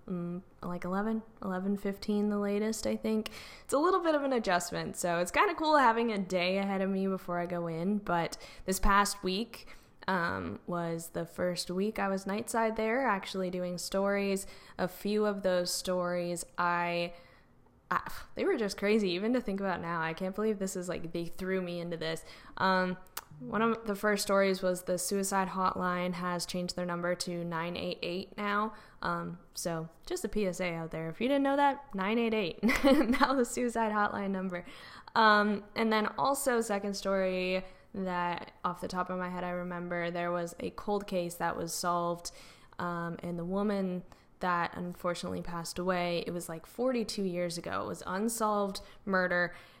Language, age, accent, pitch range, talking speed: English, 10-29, American, 175-210 Hz, 180 wpm